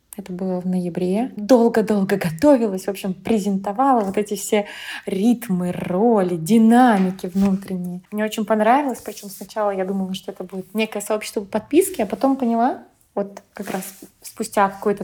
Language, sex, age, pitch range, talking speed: Russian, female, 20-39, 190-235 Hz, 150 wpm